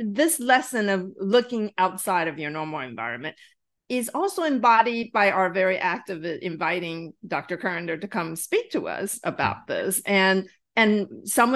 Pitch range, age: 165-225 Hz, 40-59